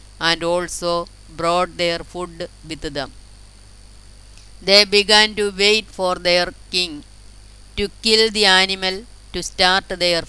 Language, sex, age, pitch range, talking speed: Malayalam, female, 20-39, 130-185 Hz, 120 wpm